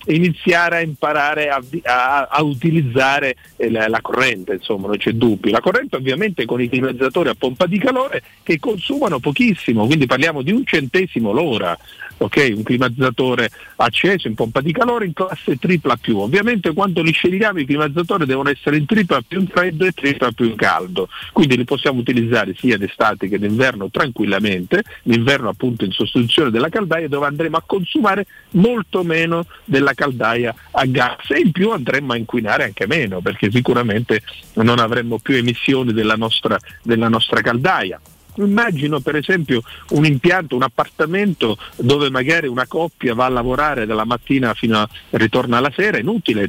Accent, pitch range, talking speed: native, 115-170 Hz, 170 wpm